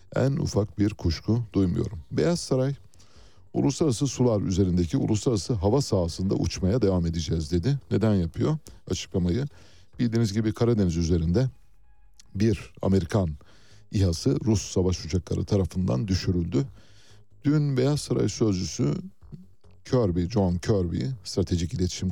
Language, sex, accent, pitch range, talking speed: Turkish, male, native, 90-110 Hz, 110 wpm